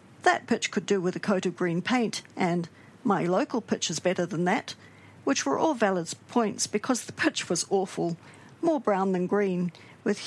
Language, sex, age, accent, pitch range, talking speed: English, female, 50-69, Australian, 185-230 Hz, 195 wpm